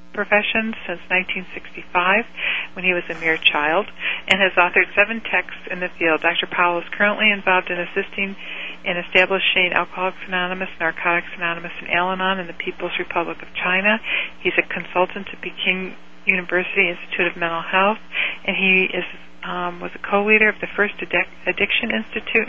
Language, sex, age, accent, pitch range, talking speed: English, female, 50-69, American, 175-195 Hz, 160 wpm